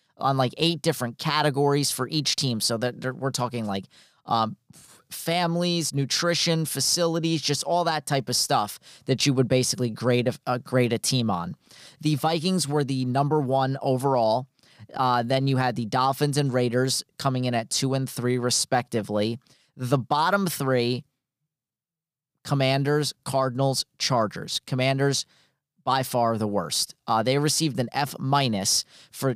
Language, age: English, 30-49